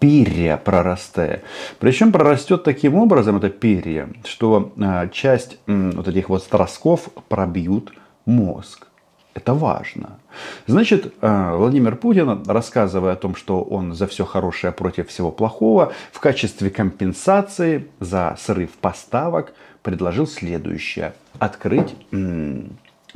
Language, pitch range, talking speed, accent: Russian, 95-120 Hz, 105 wpm, native